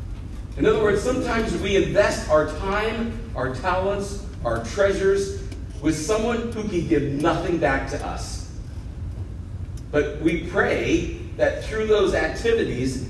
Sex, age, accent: male, 40-59, American